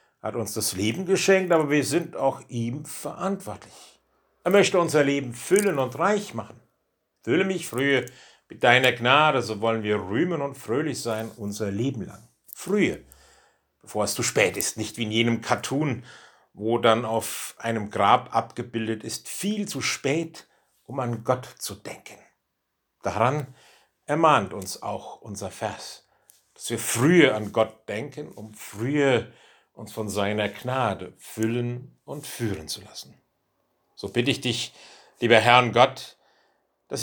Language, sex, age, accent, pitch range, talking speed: German, male, 60-79, German, 110-140 Hz, 150 wpm